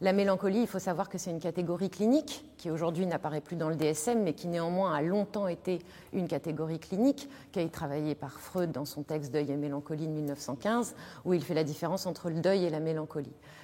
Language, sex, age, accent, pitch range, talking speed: French, female, 30-49, French, 155-200 Hz, 220 wpm